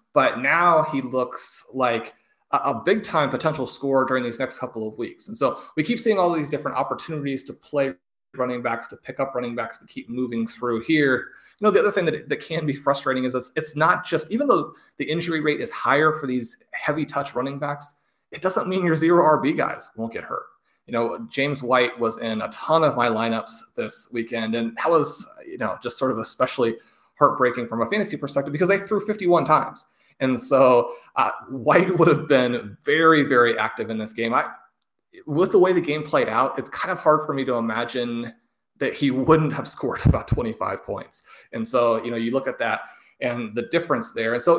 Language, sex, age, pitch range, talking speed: English, male, 30-49, 120-160 Hz, 215 wpm